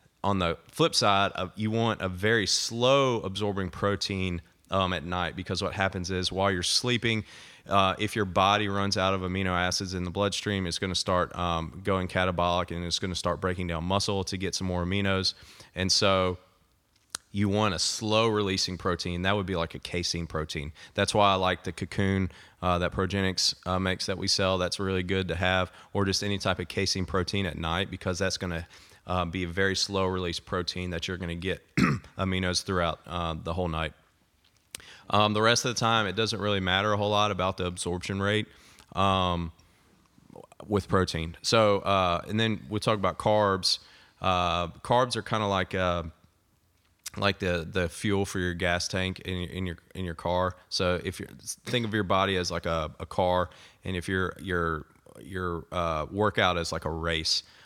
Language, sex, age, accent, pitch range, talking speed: English, male, 30-49, American, 90-100 Hz, 195 wpm